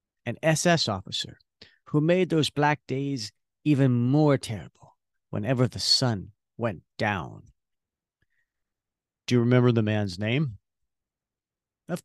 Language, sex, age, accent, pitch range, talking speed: English, male, 50-69, American, 115-150 Hz, 115 wpm